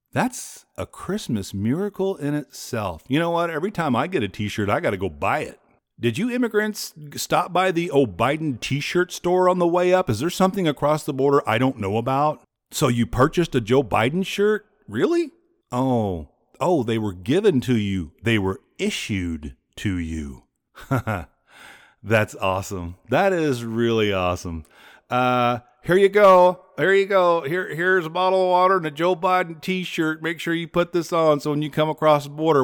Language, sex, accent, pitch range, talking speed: English, male, American, 115-175 Hz, 185 wpm